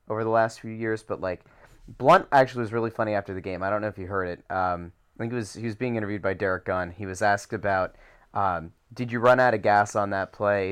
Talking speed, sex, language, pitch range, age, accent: 270 wpm, male, English, 100-125 Hz, 30-49, American